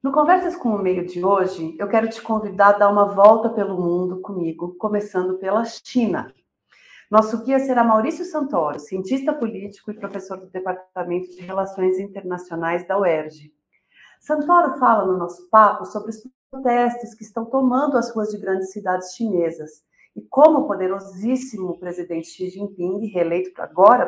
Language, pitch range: Portuguese, 185-250 Hz